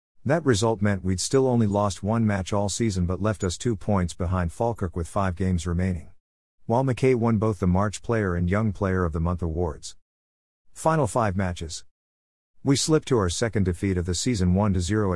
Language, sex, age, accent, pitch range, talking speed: English, male, 50-69, American, 90-110 Hz, 195 wpm